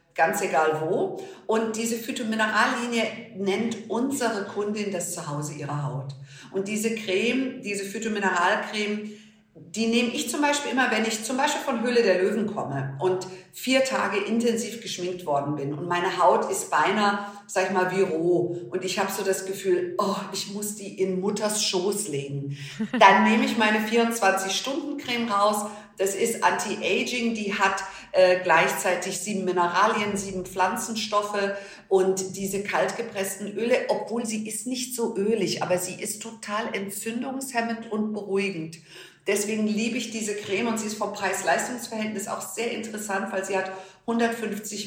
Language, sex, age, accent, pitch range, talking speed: German, female, 50-69, German, 175-220 Hz, 155 wpm